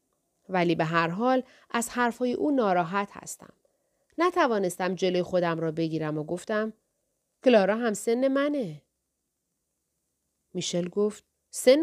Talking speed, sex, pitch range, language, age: 115 wpm, female, 175-250 Hz, Persian, 40-59